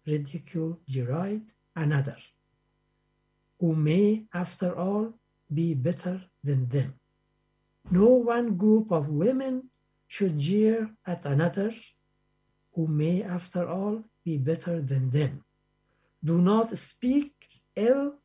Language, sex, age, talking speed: Arabic, male, 60-79, 105 wpm